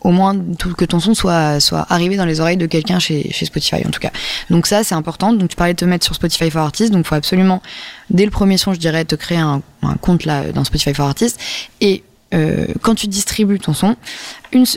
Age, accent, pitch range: 20-39, French, 160-190 Hz